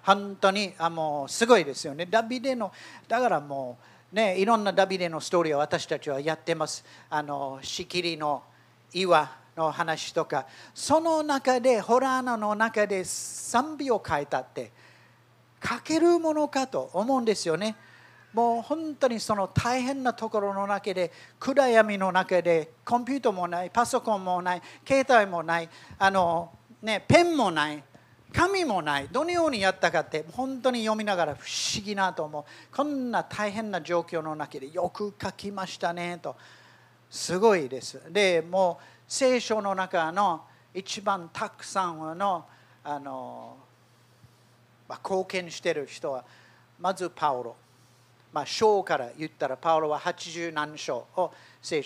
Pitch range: 150-220 Hz